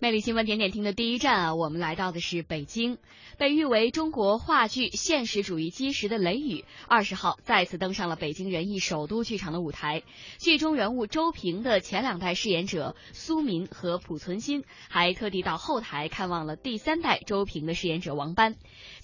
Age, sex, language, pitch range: 20-39, female, Chinese, 170-230 Hz